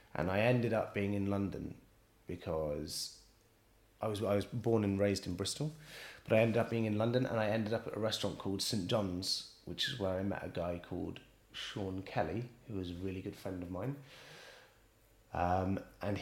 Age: 30-49